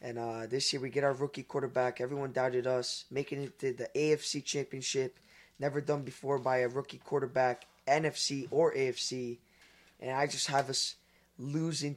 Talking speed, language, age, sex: 170 wpm, English, 20-39, male